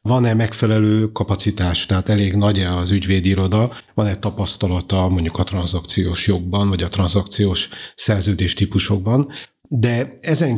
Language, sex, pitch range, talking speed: Hungarian, male, 95-110 Hz, 115 wpm